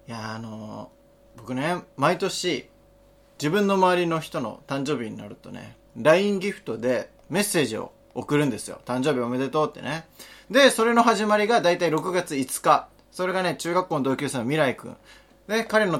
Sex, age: male, 20-39